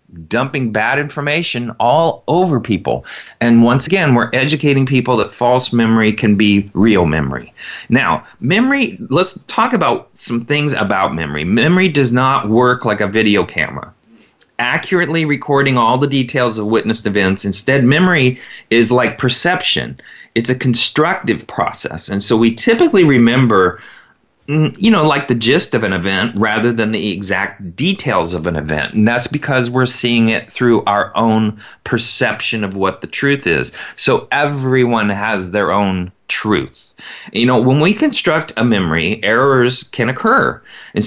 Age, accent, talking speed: 40-59, American, 155 wpm